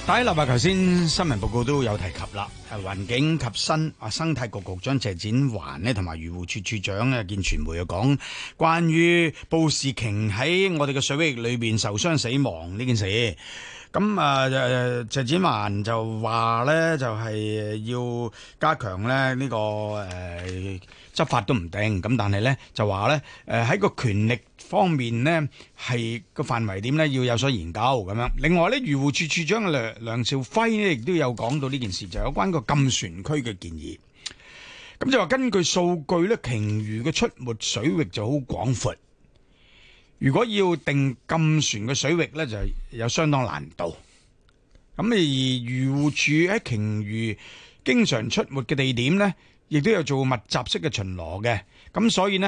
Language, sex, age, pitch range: Chinese, male, 30-49, 110-155 Hz